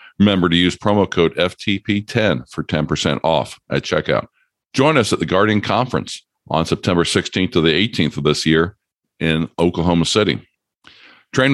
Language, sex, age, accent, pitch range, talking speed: English, male, 50-69, American, 85-105 Hz, 155 wpm